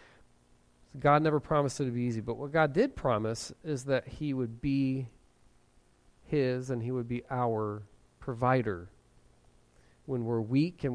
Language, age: English, 40-59